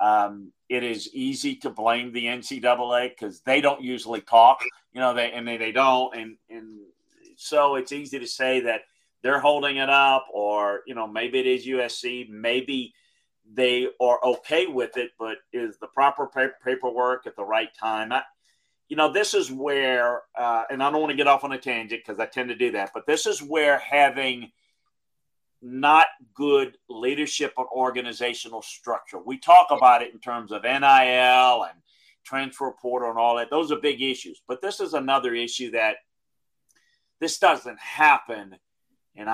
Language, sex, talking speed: English, male, 180 wpm